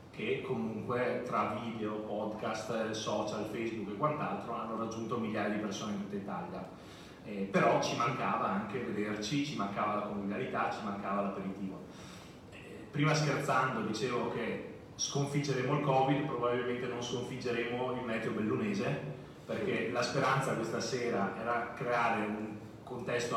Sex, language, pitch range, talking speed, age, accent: male, Italian, 100-130 Hz, 135 wpm, 30-49, native